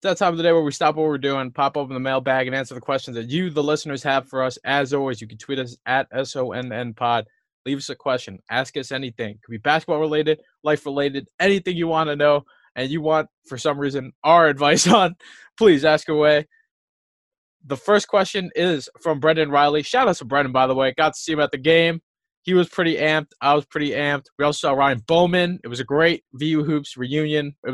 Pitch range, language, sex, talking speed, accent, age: 135-175 Hz, English, male, 225 wpm, American, 20-39